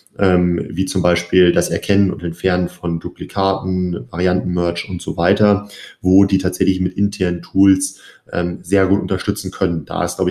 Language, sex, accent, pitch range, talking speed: German, male, German, 85-100 Hz, 165 wpm